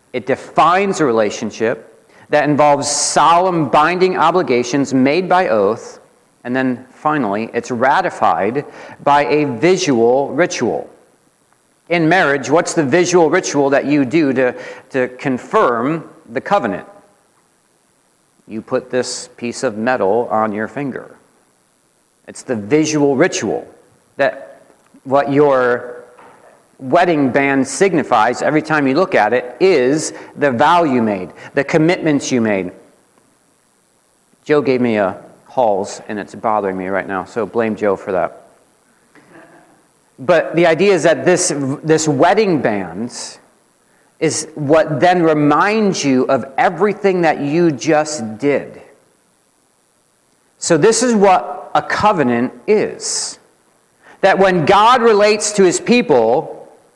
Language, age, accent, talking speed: English, 50-69, American, 125 wpm